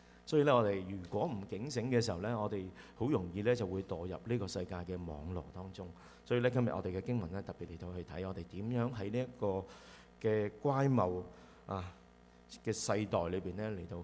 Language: Chinese